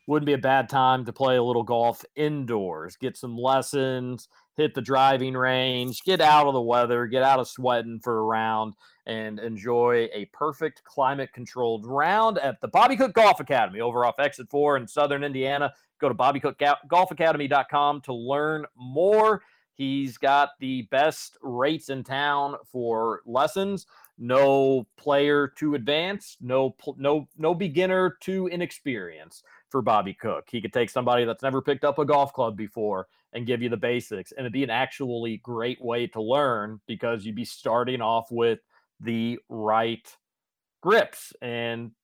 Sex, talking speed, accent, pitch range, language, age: male, 160 wpm, American, 120-145 Hz, English, 40-59